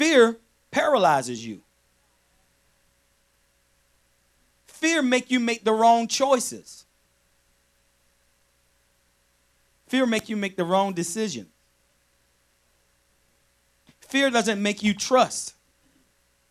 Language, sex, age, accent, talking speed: English, male, 40-59, American, 80 wpm